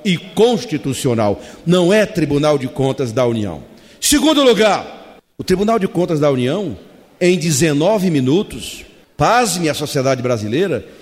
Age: 40-59